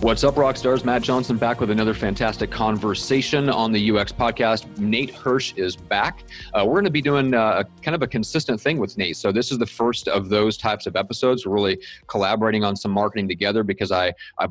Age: 30-49